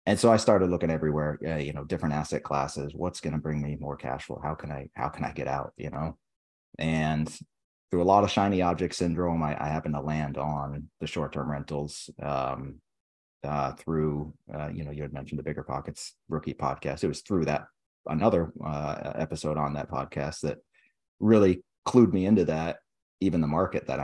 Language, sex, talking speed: English, male, 205 wpm